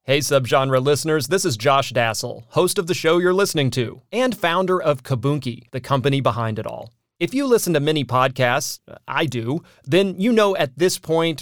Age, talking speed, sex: 30-49, 195 wpm, male